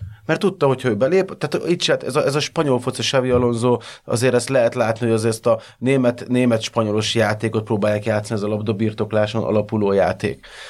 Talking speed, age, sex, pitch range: 185 wpm, 30-49, male, 105-120 Hz